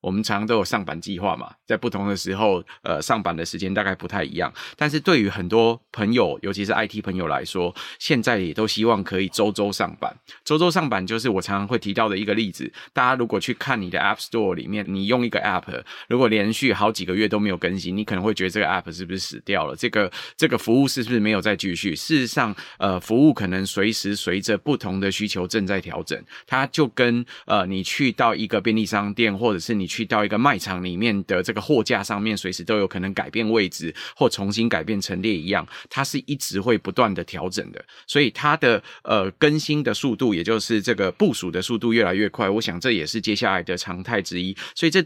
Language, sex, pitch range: Chinese, male, 95-115 Hz